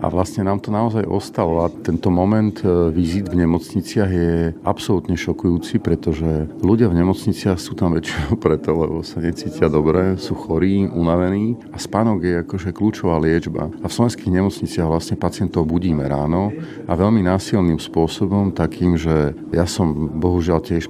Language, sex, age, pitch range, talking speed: Slovak, male, 40-59, 85-100 Hz, 155 wpm